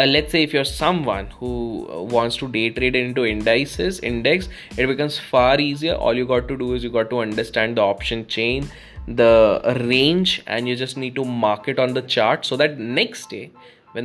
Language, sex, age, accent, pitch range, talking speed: English, male, 10-29, Indian, 115-150 Hz, 205 wpm